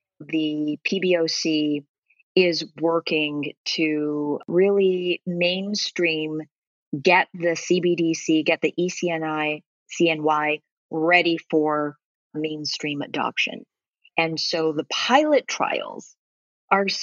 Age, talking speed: 40-59, 85 wpm